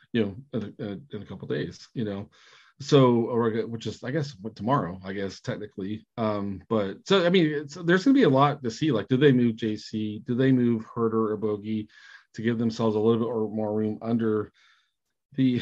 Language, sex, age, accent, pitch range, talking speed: English, male, 40-59, American, 110-130 Hz, 225 wpm